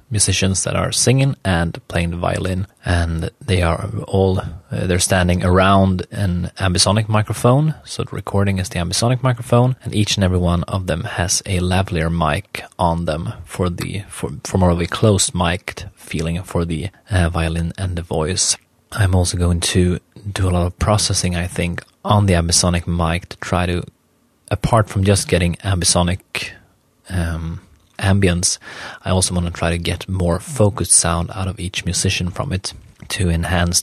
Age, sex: 30-49, male